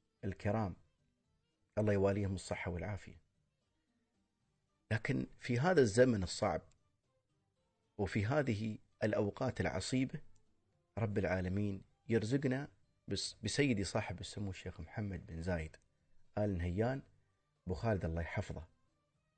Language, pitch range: Arabic, 95-120 Hz